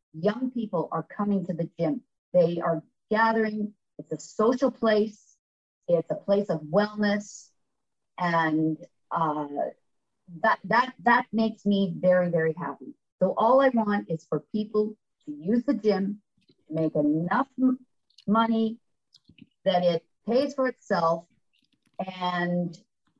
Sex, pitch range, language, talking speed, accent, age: female, 165-225 Hz, English, 130 wpm, American, 40-59